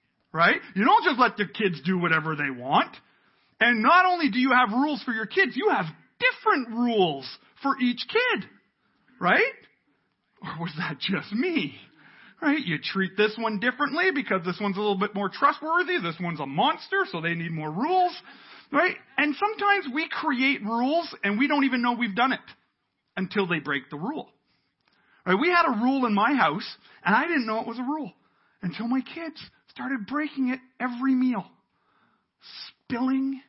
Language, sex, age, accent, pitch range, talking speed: English, male, 40-59, American, 190-280 Hz, 180 wpm